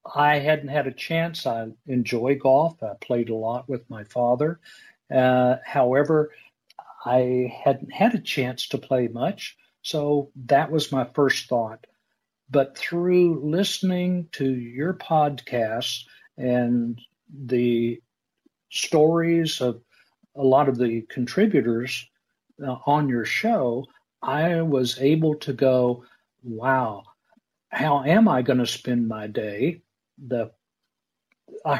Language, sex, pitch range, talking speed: English, male, 125-160 Hz, 125 wpm